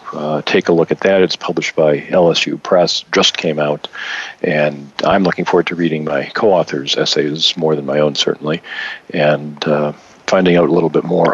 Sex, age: male, 50-69